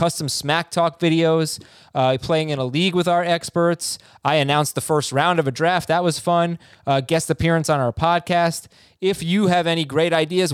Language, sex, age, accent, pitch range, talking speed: English, male, 20-39, American, 130-170 Hz, 200 wpm